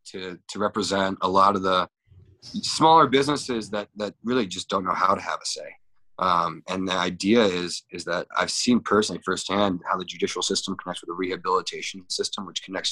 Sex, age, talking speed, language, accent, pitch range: male, 20-39, 195 wpm, English, American, 95-110 Hz